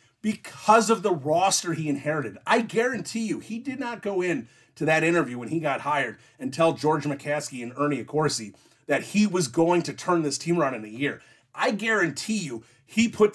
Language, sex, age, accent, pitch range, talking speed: English, male, 30-49, American, 135-205 Hz, 200 wpm